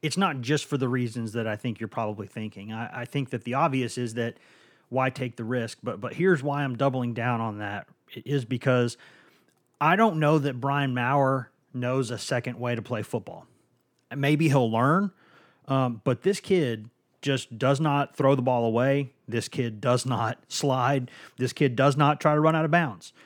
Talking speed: 200 wpm